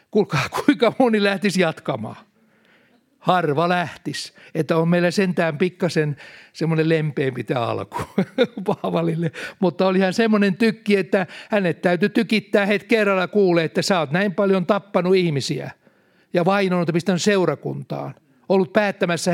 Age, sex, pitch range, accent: 60-79, male, 150-195 Hz, native